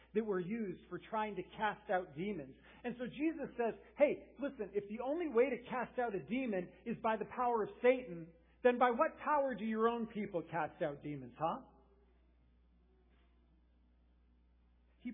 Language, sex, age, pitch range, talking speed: English, male, 50-69, 155-230 Hz, 170 wpm